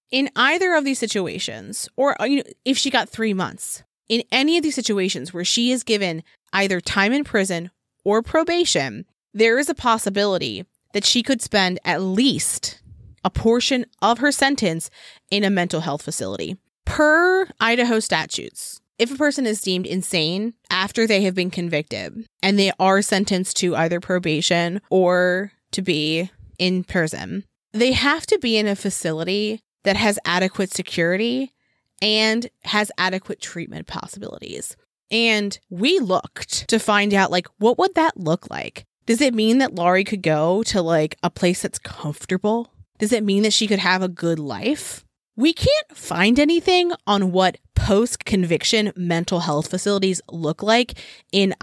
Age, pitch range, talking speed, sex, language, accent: 20-39, 180-235 Hz, 160 wpm, female, English, American